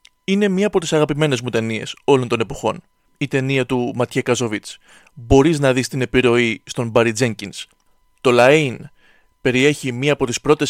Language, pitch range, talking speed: Greek, 125-160 Hz, 170 wpm